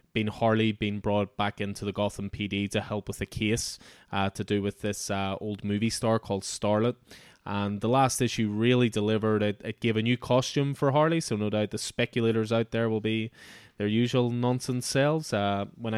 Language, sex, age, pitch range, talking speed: English, male, 20-39, 100-115 Hz, 205 wpm